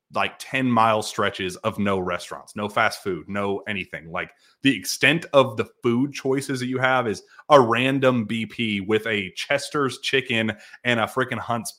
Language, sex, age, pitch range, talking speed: English, male, 30-49, 105-135 Hz, 175 wpm